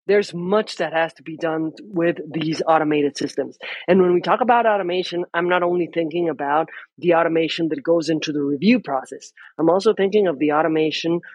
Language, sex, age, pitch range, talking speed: English, male, 30-49, 160-190 Hz, 190 wpm